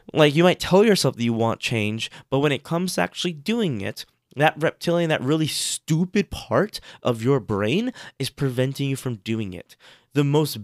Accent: American